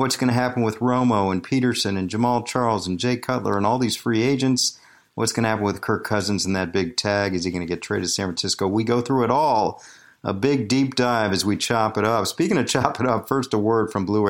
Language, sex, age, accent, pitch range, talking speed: English, male, 50-69, American, 100-125 Hz, 265 wpm